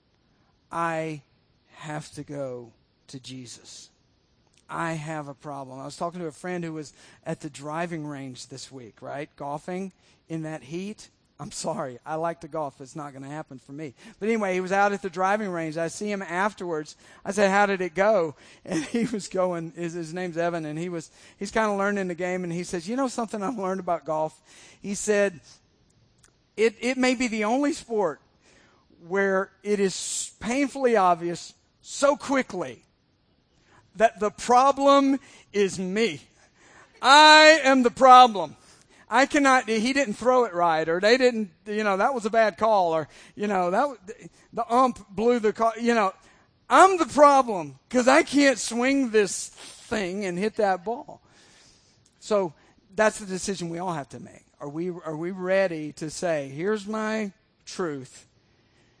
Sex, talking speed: male, 175 wpm